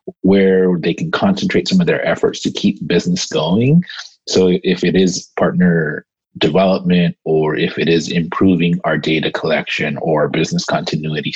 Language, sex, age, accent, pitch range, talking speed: English, male, 30-49, American, 85-135 Hz, 155 wpm